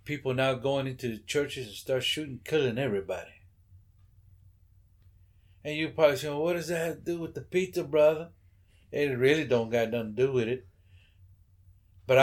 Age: 60-79